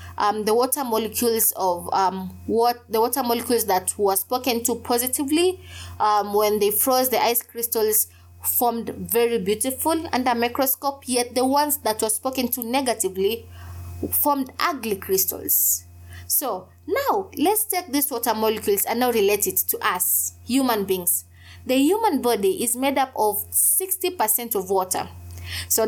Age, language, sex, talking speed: 20-39, English, female, 150 wpm